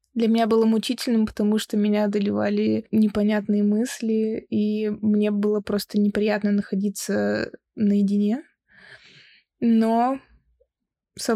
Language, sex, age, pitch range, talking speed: Russian, female, 20-39, 205-230 Hz, 100 wpm